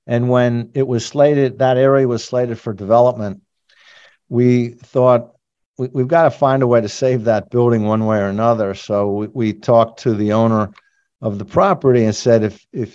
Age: 50-69